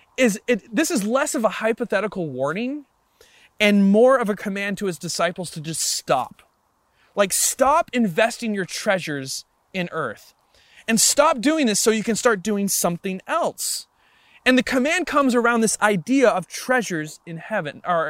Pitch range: 165-225 Hz